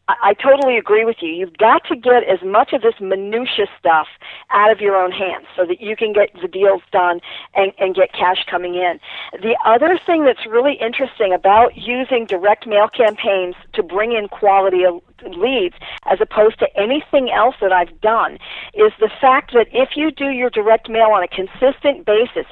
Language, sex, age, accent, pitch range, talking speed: English, female, 50-69, American, 195-255 Hz, 195 wpm